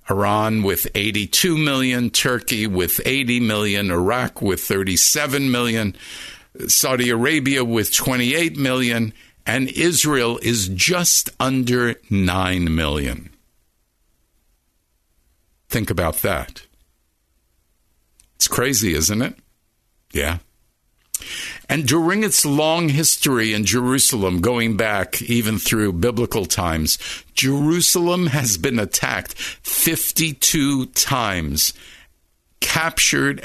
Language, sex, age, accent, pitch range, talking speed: English, male, 50-69, American, 100-140 Hz, 95 wpm